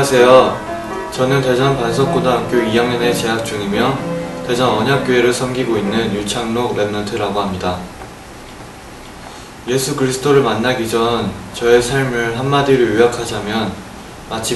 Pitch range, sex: 105-125 Hz, male